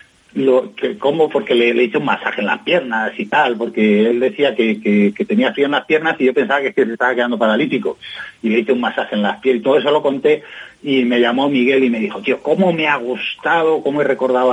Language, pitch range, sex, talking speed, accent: Spanish, 115-145 Hz, male, 255 wpm, Spanish